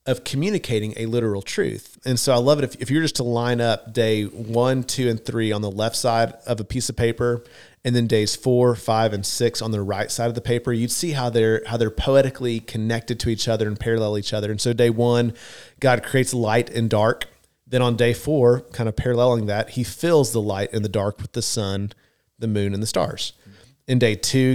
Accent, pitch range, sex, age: American, 110-125 Hz, male, 40-59